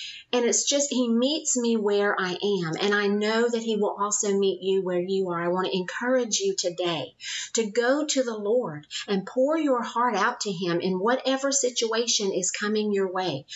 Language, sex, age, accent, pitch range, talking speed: English, female, 40-59, American, 195-245 Hz, 205 wpm